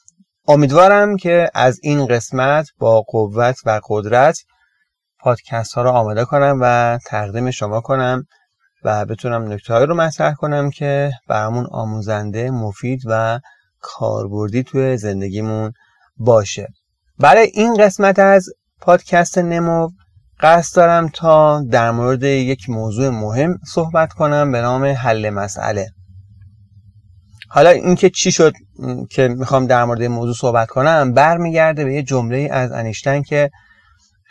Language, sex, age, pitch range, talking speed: Persian, male, 30-49, 110-145 Hz, 125 wpm